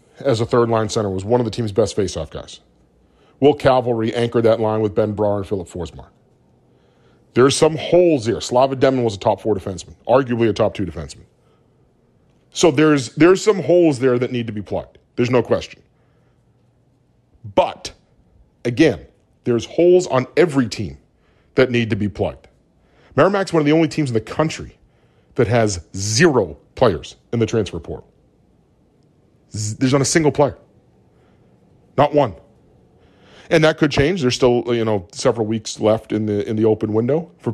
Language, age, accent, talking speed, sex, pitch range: English, 40-59, American, 175 wpm, male, 110-155 Hz